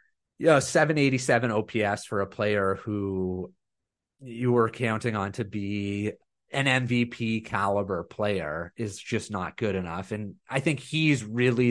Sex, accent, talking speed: male, American, 150 wpm